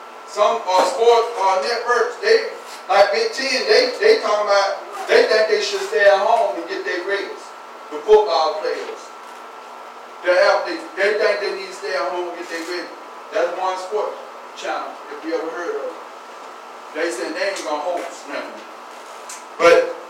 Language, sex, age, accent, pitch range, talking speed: English, male, 40-59, American, 165-230 Hz, 175 wpm